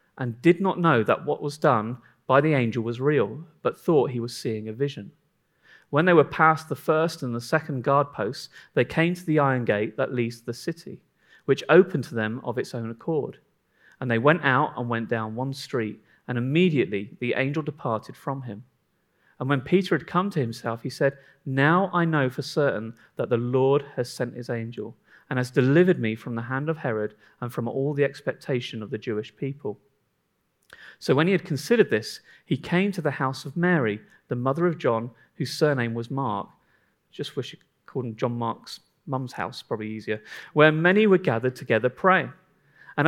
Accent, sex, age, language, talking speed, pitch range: British, male, 40-59, English, 200 wpm, 120-160 Hz